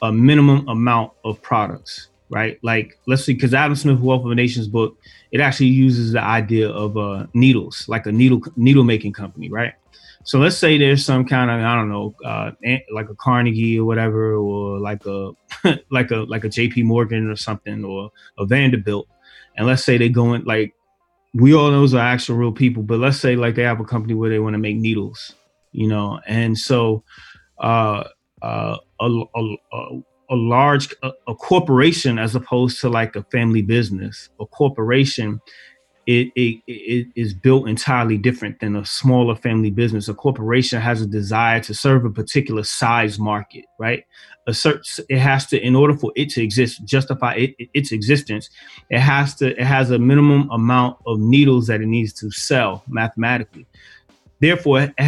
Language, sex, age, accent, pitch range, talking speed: English, male, 30-49, American, 110-130 Hz, 185 wpm